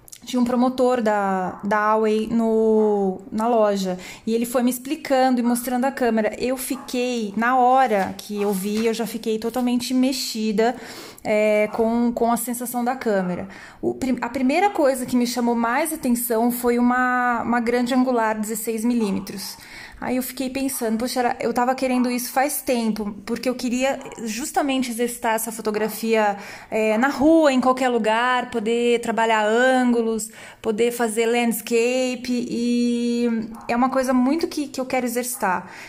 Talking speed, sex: 150 wpm, female